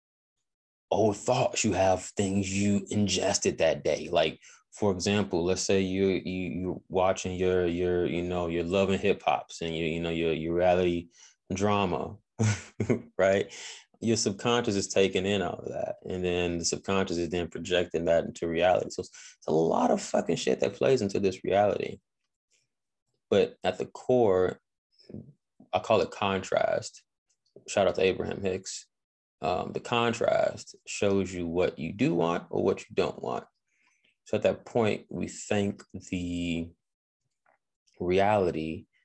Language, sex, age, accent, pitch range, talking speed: English, male, 20-39, American, 90-110 Hz, 155 wpm